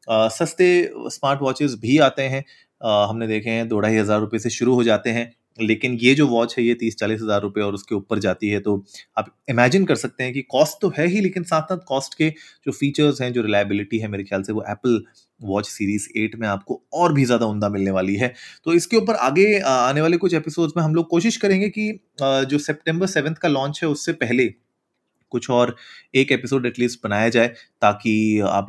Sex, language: male, Hindi